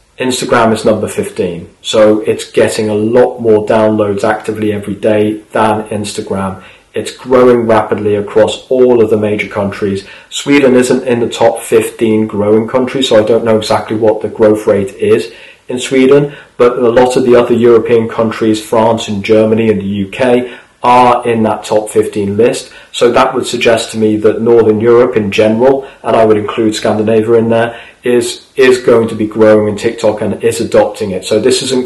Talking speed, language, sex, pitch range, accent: 185 wpm, English, male, 110-125 Hz, British